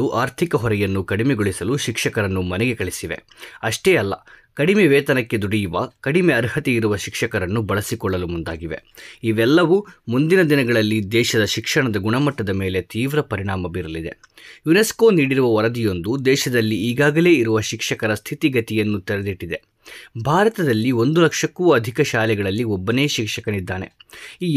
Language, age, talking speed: Kannada, 20-39, 105 wpm